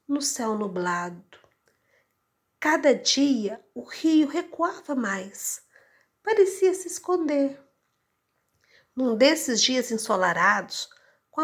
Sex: female